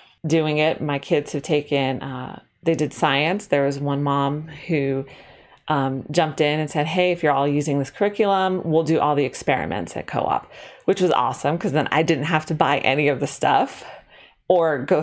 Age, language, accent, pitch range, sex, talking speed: 30-49, English, American, 140-175 Hz, female, 200 wpm